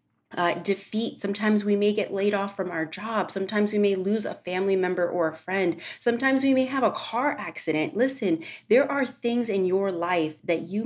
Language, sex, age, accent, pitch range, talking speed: English, female, 30-49, American, 160-210 Hz, 205 wpm